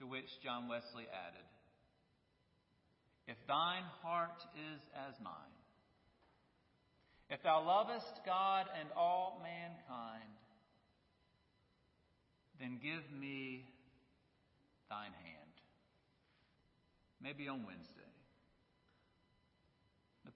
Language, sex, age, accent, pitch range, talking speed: English, male, 50-69, American, 125-200 Hz, 80 wpm